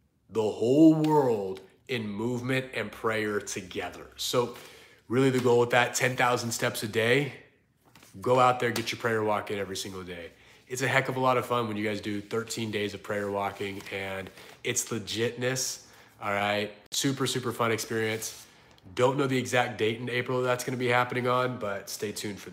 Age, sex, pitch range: 30-49, male, 105-125 Hz